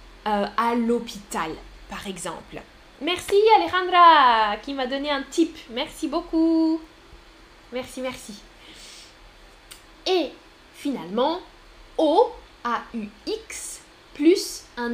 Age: 10-29